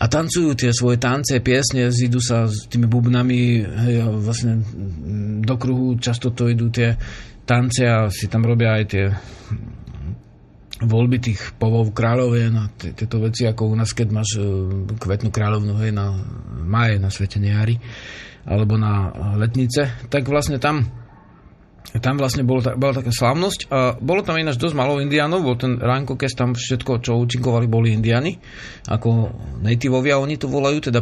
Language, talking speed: Slovak, 155 wpm